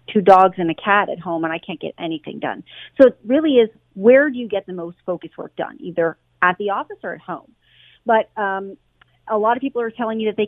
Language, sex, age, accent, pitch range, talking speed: English, female, 40-59, American, 185-235 Hz, 250 wpm